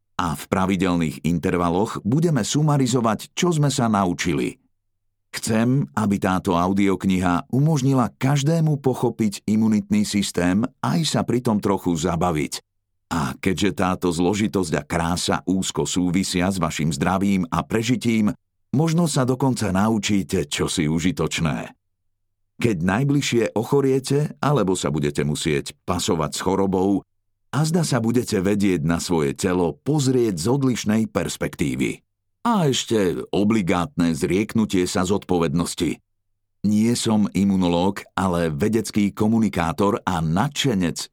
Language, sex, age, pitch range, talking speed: Slovak, male, 50-69, 90-115 Hz, 120 wpm